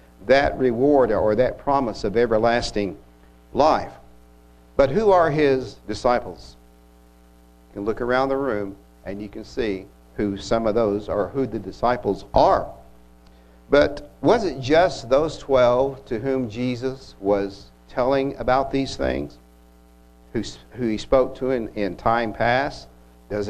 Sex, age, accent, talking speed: male, 60-79, American, 145 wpm